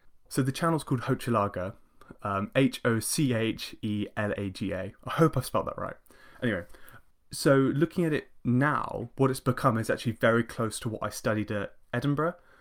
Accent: British